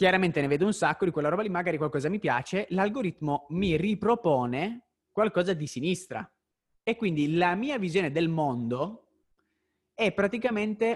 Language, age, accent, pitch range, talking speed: Italian, 30-49, native, 140-195 Hz, 155 wpm